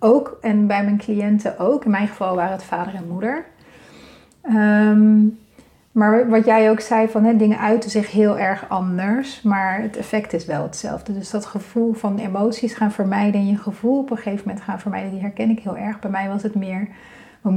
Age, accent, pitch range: 40-59, Dutch, 195-230 Hz